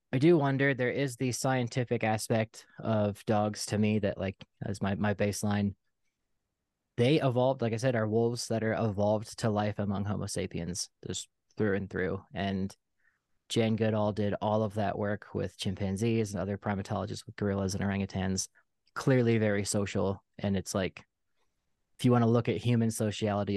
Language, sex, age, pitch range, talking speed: English, male, 20-39, 95-110 Hz, 170 wpm